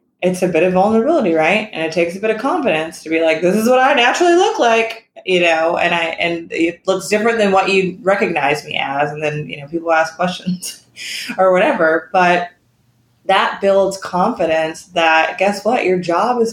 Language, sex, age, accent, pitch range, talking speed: English, female, 20-39, American, 160-200 Hz, 205 wpm